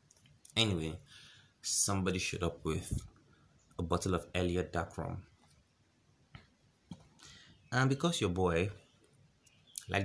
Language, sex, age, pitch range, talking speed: English, male, 20-39, 95-125 Hz, 95 wpm